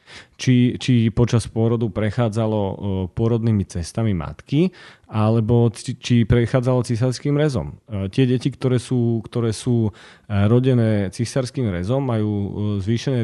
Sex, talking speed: male, 115 wpm